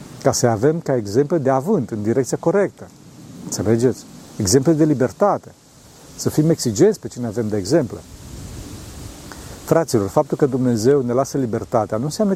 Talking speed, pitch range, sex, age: 150 wpm, 115-150 Hz, male, 50-69